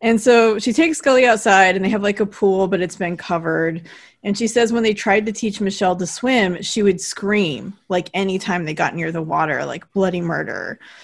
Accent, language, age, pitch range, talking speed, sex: American, English, 30-49, 180-230 Hz, 225 wpm, female